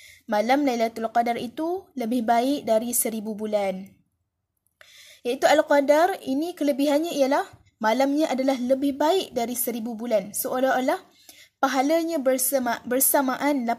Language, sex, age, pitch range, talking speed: Malay, female, 20-39, 235-285 Hz, 110 wpm